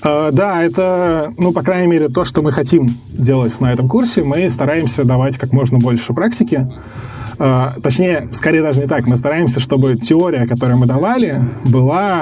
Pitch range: 120-155 Hz